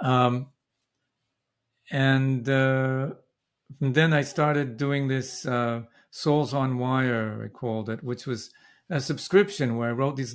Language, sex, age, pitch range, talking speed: English, male, 50-69, 120-135 Hz, 140 wpm